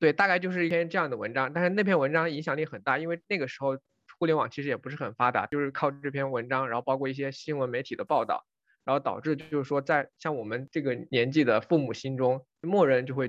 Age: 20-39